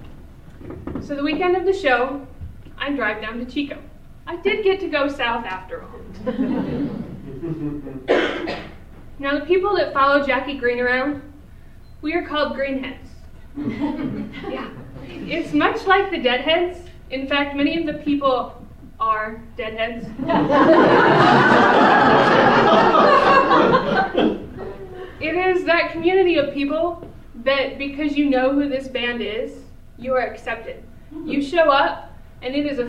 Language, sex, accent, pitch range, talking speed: English, female, American, 255-320 Hz, 125 wpm